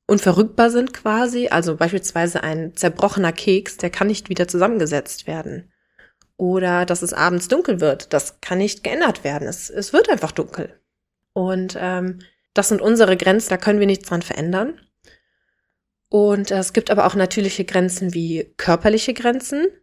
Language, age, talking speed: German, 20-39, 160 wpm